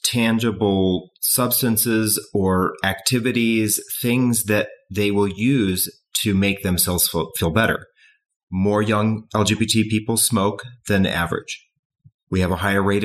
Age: 30-49